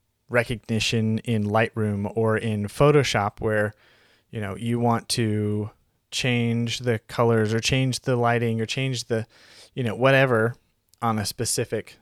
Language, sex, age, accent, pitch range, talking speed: English, male, 20-39, American, 105-125 Hz, 140 wpm